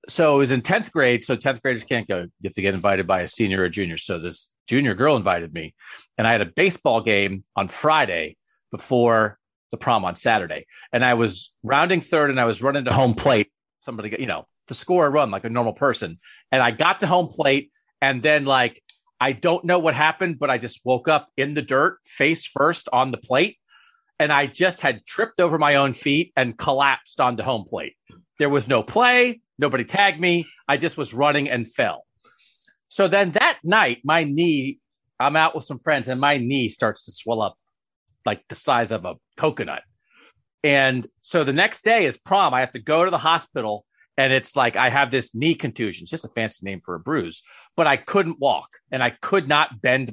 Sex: male